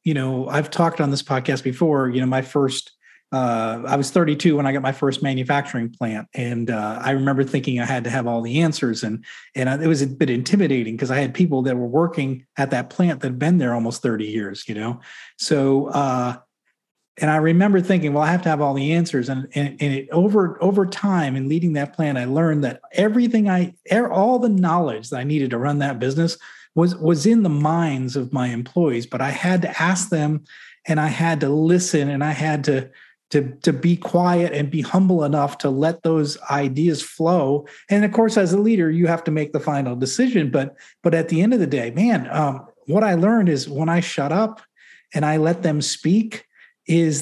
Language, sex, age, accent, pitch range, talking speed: English, male, 40-59, American, 135-175 Hz, 220 wpm